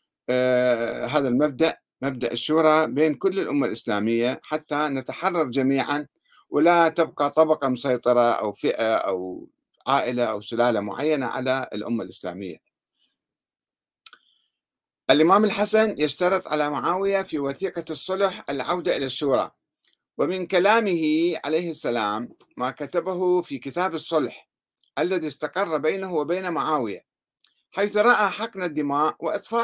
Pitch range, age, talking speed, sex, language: 135-190 Hz, 50-69, 110 wpm, male, Arabic